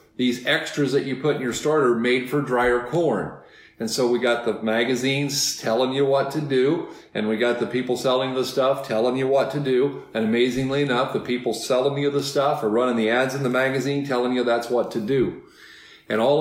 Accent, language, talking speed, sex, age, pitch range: American, English, 220 wpm, male, 40-59, 120-145 Hz